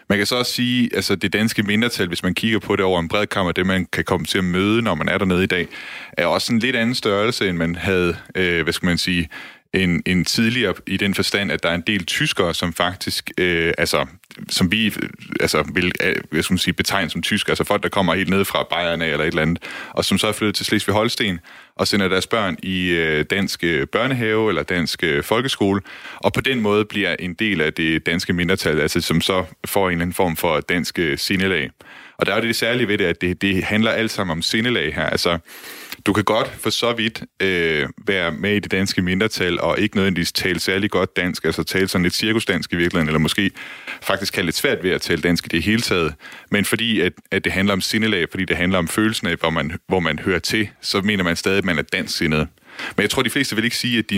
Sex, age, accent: male, 30-49, native